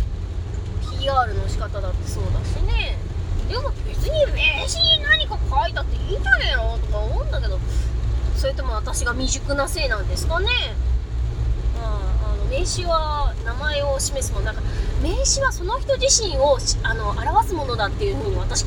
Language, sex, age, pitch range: Japanese, female, 20-39, 85-115 Hz